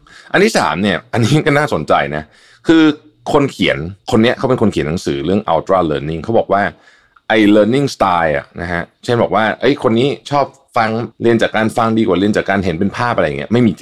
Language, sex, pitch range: Thai, male, 85-115 Hz